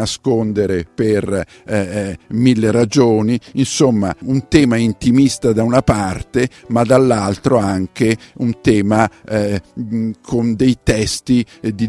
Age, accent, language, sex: 50-69, native, Italian, male